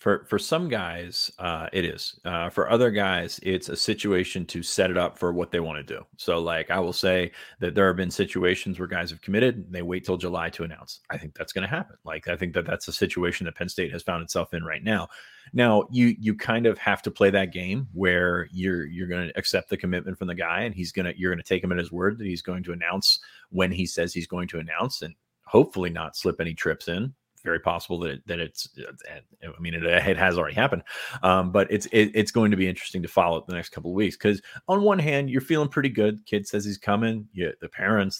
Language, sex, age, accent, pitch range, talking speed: English, male, 30-49, American, 90-105 Hz, 255 wpm